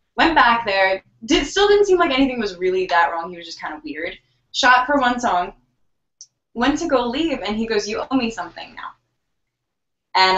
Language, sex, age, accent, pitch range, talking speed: English, female, 10-29, American, 170-225 Hz, 210 wpm